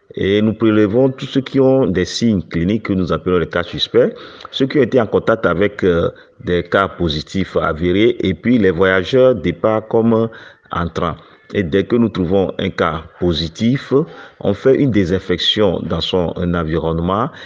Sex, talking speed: male, 170 wpm